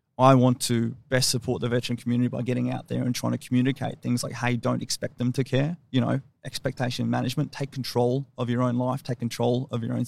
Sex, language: male, English